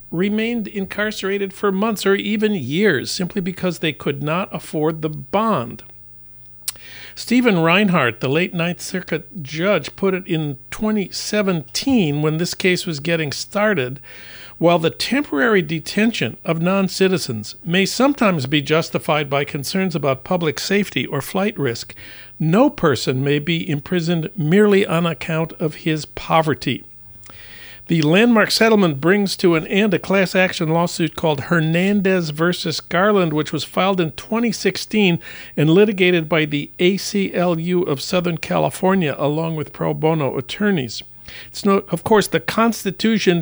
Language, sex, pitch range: English, male, 155-195 Hz